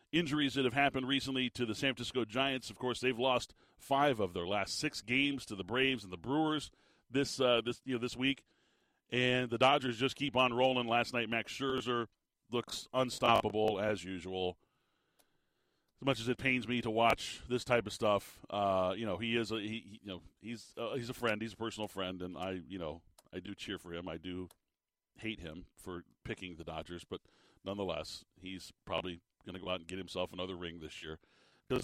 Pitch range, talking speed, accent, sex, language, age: 100-130 Hz, 210 wpm, American, male, English, 40-59